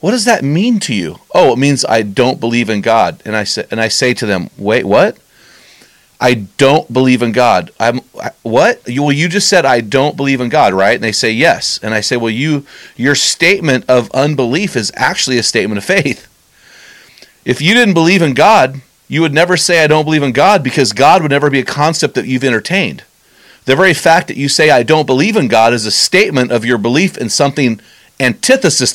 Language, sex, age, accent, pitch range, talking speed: English, male, 40-59, American, 115-155 Hz, 220 wpm